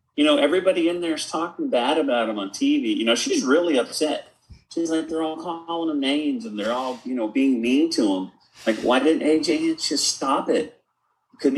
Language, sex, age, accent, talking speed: English, male, 30-49, American, 220 wpm